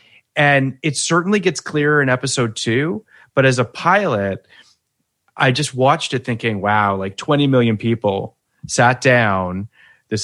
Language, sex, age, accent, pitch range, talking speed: English, male, 30-49, American, 110-150 Hz, 145 wpm